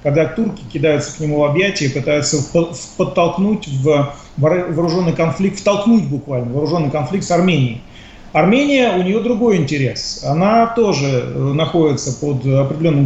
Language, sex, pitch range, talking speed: Russian, male, 145-195 Hz, 130 wpm